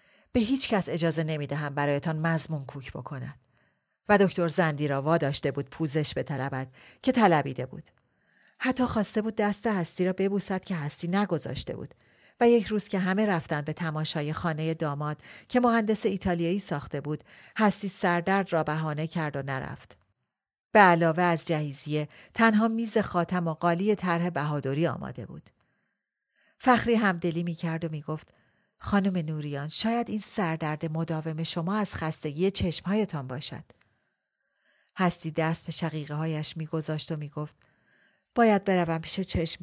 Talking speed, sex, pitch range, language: 150 wpm, female, 150-185 Hz, Persian